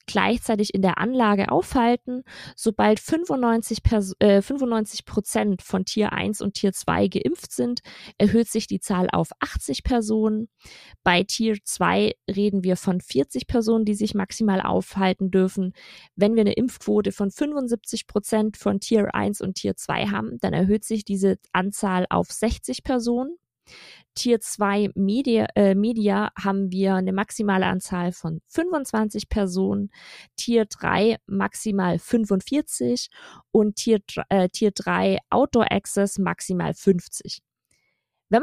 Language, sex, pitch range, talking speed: German, female, 190-220 Hz, 135 wpm